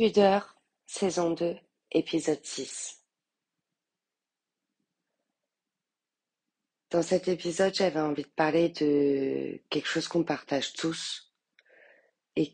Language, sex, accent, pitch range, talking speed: French, female, French, 140-165 Hz, 90 wpm